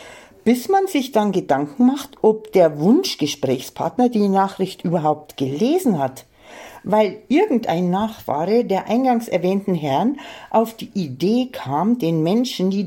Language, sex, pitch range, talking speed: German, female, 150-235 Hz, 130 wpm